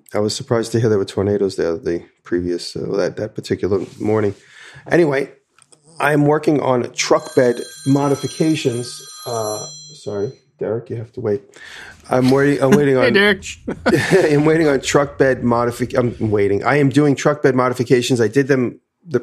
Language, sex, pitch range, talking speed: English, male, 110-140 Hz, 170 wpm